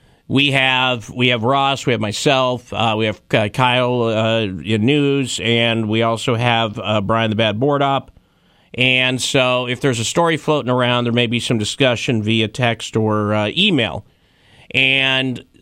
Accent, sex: American, male